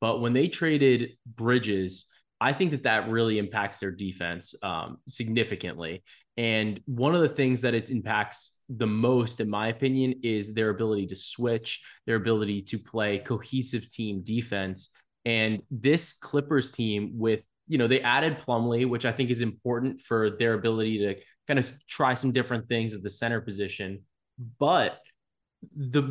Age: 20-39